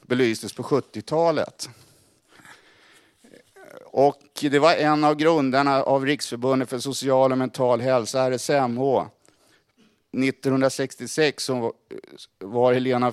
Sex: male